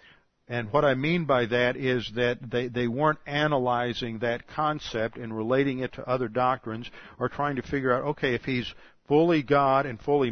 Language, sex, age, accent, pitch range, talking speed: English, male, 50-69, American, 115-135 Hz, 185 wpm